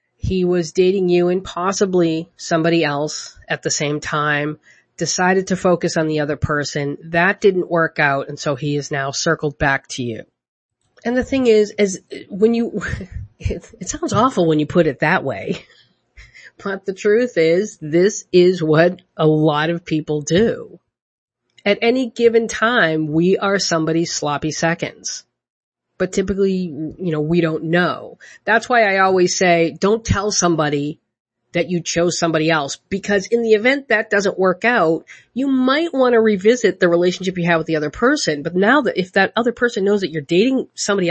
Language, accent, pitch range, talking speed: English, American, 160-205 Hz, 180 wpm